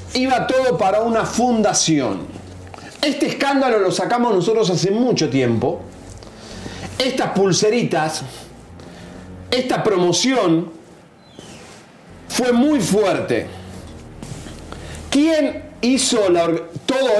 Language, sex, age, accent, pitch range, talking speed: Spanish, male, 40-59, Argentinian, 165-245 Hz, 85 wpm